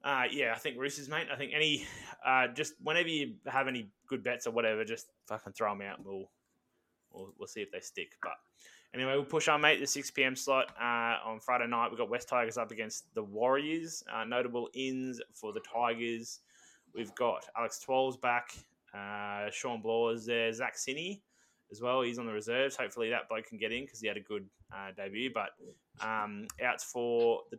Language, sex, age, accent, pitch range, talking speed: English, male, 10-29, Australian, 110-130 Hz, 210 wpm